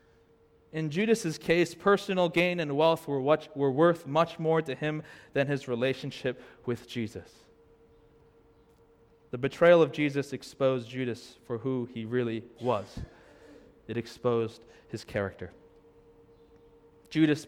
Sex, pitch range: male, 115-155 Hz